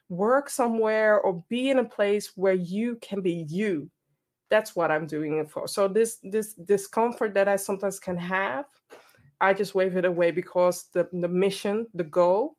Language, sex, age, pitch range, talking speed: English, female, 20-39, 180-245 Hz, 180 wpm